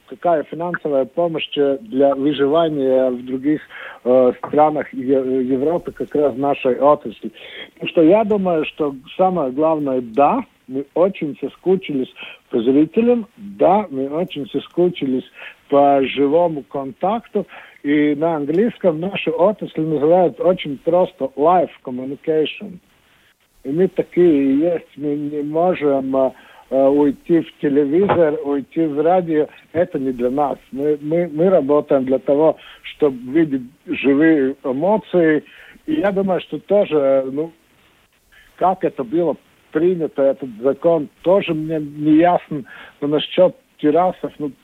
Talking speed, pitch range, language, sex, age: 130 wpm, 135-175 Hz, Russian, male, 60-79